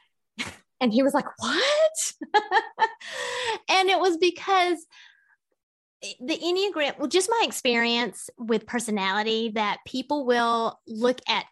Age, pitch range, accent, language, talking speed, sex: 30-49, 215-280 Hz, American, English, 115 wpm, female